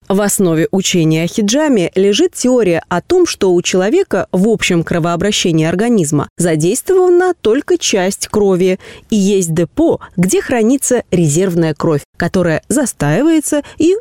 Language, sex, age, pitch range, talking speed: Russian, female, 20-39, 175-270 Hz, 130 wpm